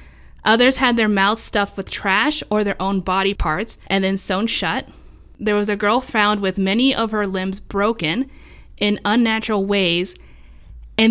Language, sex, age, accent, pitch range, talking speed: English, female, 10-29, American, 190-245 Hz, 165 wpm